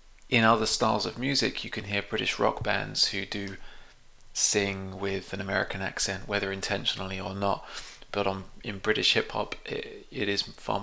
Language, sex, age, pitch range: English, male, 20-39, 95-110 Hz